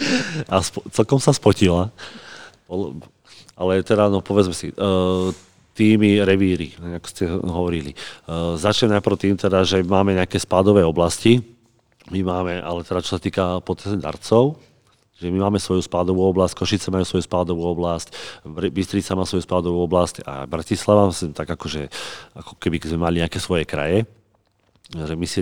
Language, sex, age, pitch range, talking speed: Slovak, male, 40-59, 90-100 Hz, 155 wpm